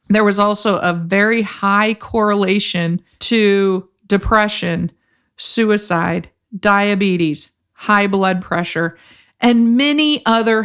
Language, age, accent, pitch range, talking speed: English, 40-59, American, 185-220 Hz, 95 wpm